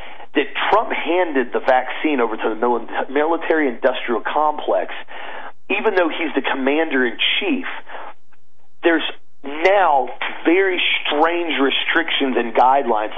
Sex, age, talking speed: male, 40-59, 100 wpm